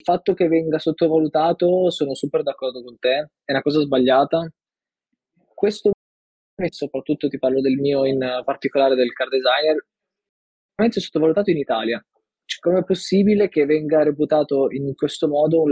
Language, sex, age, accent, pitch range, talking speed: Italian, male, 20-39, native, 135-175 Hz, 155 wpm